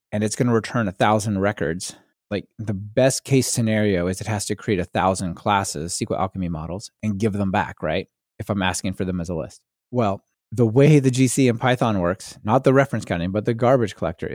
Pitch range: 100-130 Hz